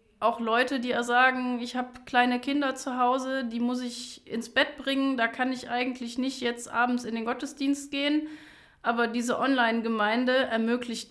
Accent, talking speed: German, 165 wpm